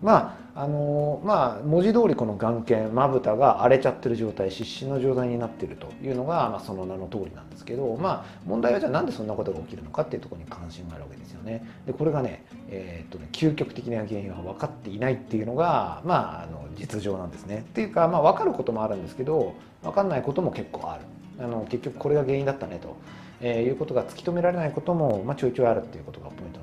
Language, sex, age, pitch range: Japanese, male, 40-59, 100-150 Hz